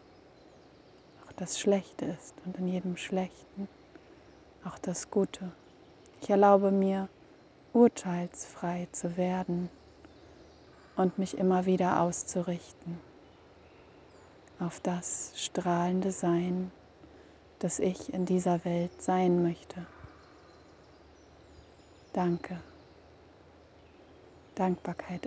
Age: 30-49